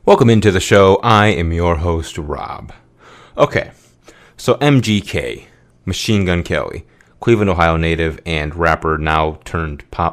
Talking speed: 135 wpm